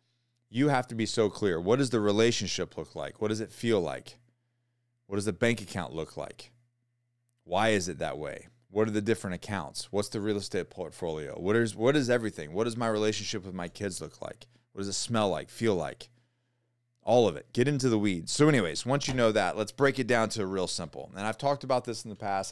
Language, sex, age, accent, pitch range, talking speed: English, male, 30-49, American, 100-120 Hz, 235 wpm